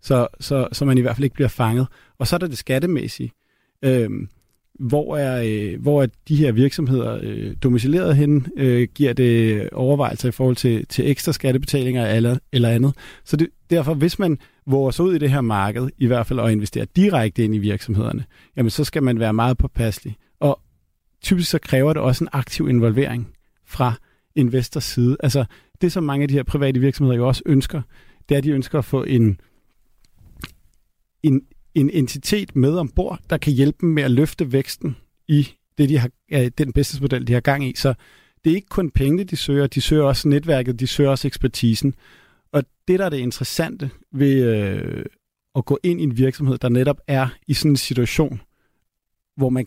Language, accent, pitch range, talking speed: Danish, native, 125-145 Hz, 190 wpm